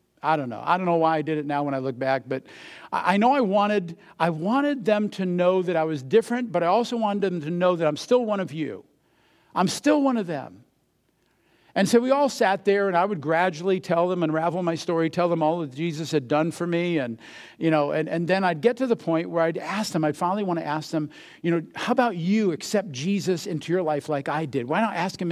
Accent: American